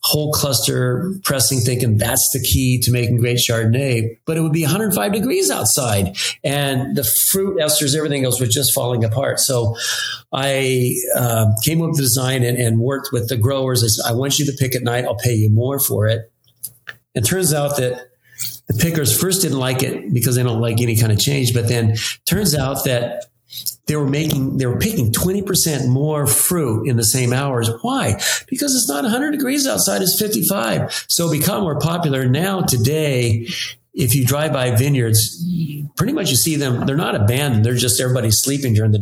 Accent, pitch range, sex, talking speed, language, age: American, 120-150 Hz, male, 195 wpm, English, 40-59